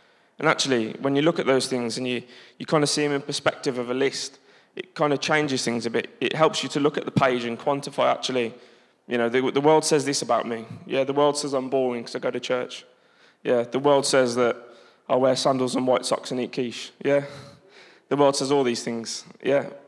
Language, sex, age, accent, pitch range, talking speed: English, male, 20-39, British, 120-140 Hz, 240 wpm